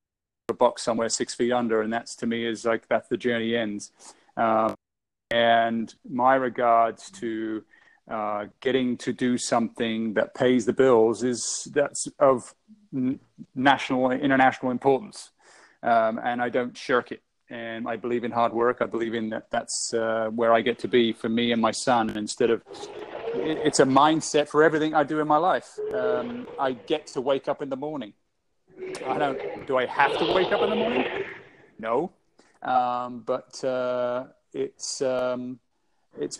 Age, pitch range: 30-49, 115-130 Hz